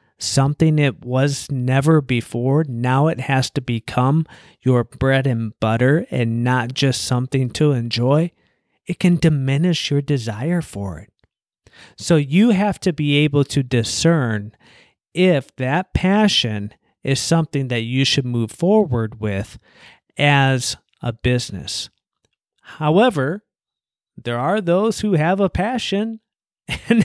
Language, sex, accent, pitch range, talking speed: English, male, American, 120-170 Hz, 130 wpm